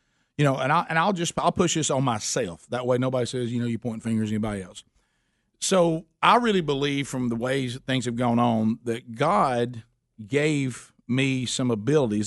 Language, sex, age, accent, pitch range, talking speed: English, male, 50-69, American, 115-150 Hz, 215 wpm